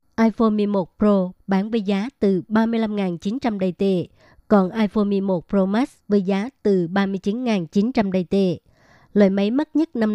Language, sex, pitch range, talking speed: Vietnamese, male, 195-220 Hz, 155 wpm